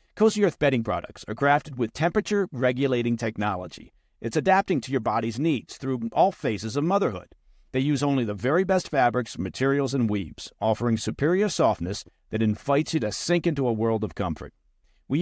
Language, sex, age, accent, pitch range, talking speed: English, male, 50-69, American, 110-160 Hz, 175 wpm